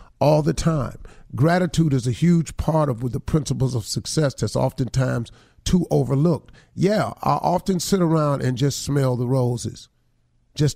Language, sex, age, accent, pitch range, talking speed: English, male, 40-59, American, 125-160 Hz, 155 wpm